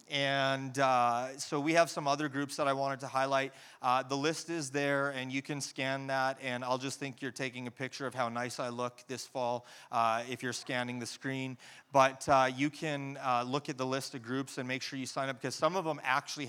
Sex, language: male, English